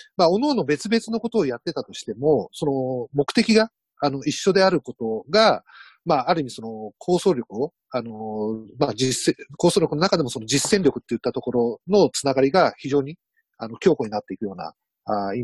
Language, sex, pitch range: Japanese, male, 125-195 Hz